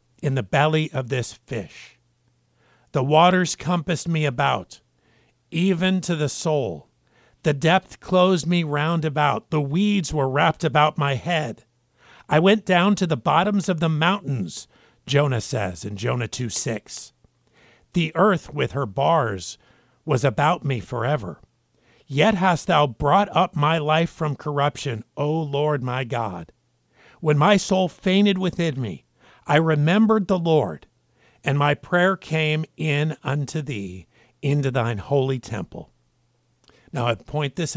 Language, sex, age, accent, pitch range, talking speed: English, male, 50-69, American, 120-160 Hz, 140 wpm